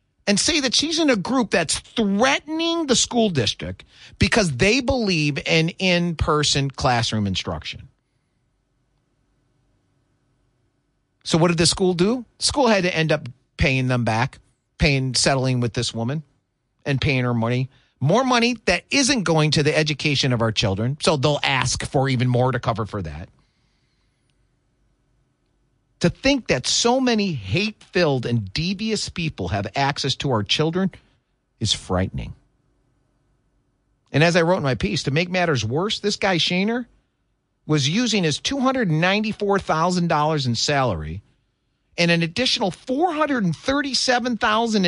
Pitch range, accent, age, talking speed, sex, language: 125-195 Hz, American, 40-59, 140 wpm, male, English